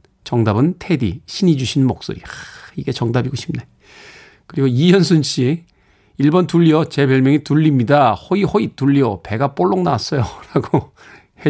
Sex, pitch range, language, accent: male, 120-170 Hz, Korean, native